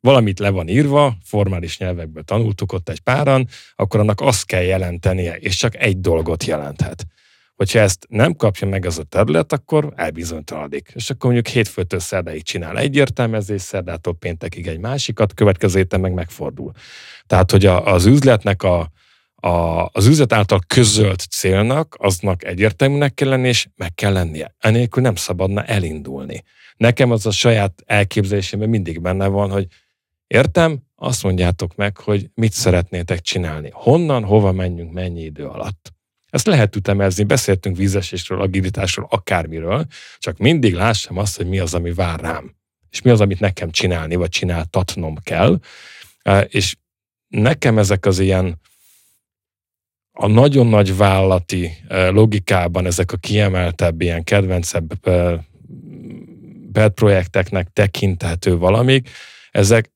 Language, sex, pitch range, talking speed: Hungarian, male, 90-110 Hz, 135 wpm